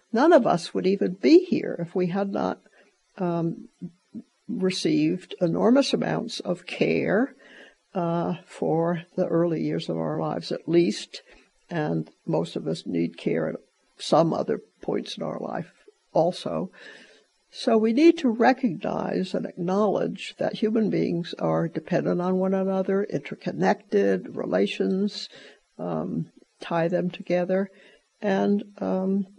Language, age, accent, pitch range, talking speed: English, 60-79, American, 170-210 Hz, 130 wpm